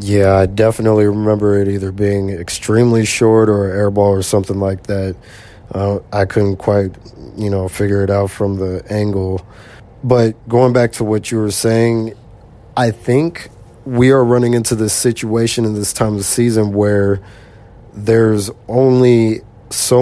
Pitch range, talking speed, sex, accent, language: 105-115 Hz, 155 wpm, male, American, English